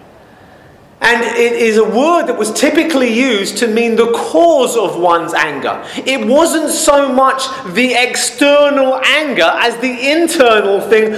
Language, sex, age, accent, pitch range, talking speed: English, male, 30-49, British, 230-295 Hz, 145 wpm